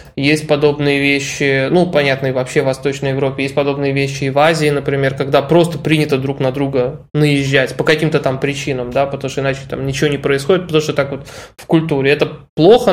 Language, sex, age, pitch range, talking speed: Russian, male, 20-39, 135-150 Hz, 200 wpm